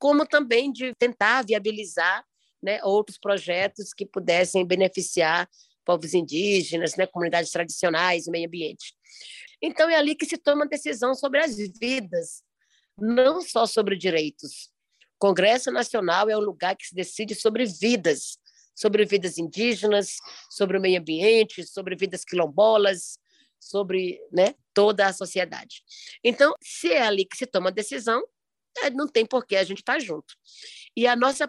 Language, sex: Portuguese, female